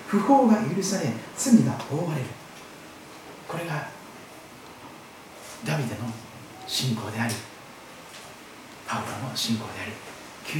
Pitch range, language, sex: 145-235 Hz, Japanese, male